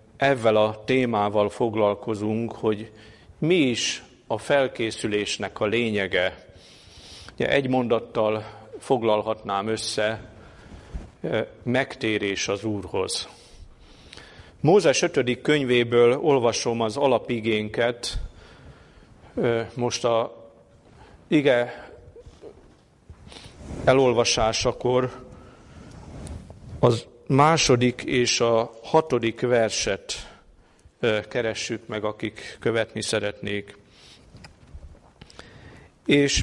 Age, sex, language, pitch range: 50-69, male, Hungarian, 110-125 Hz